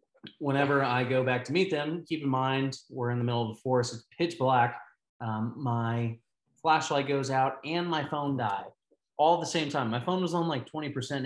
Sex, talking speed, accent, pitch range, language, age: male, 220 wpm, American, 120-150 Hz, English, 20-39